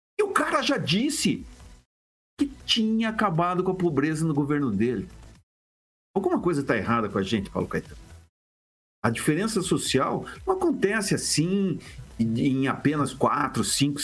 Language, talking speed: Portuguese, 135 wpm